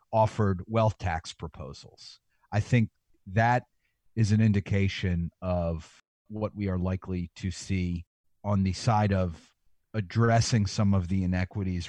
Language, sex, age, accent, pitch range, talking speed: English, male, 40-59, American, 90-110 Hz, 130 wpm